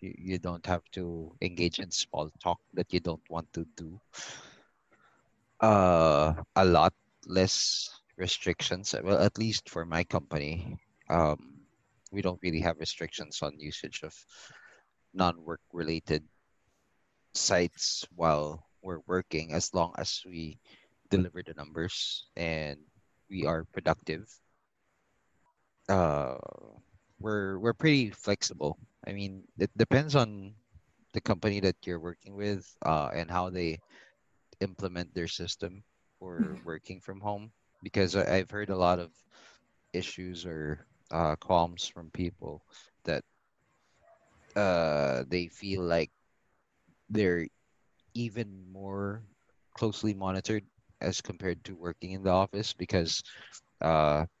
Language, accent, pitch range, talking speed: English, Filipino, 85-100 Hz, 120 wpm